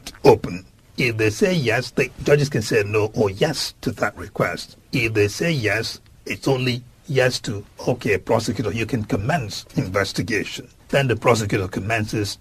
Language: English